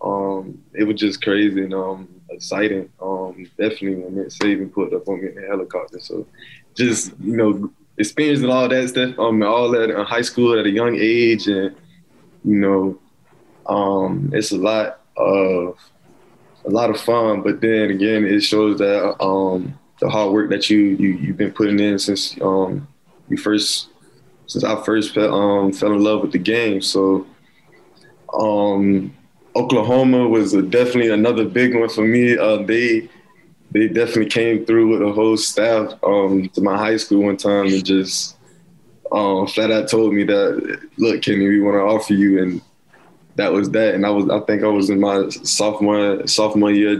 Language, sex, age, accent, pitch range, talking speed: English, male, 20-39, American, 100-115 Hz, 175 wpm